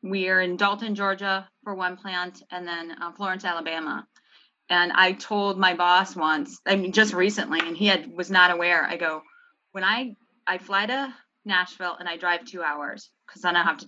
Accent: American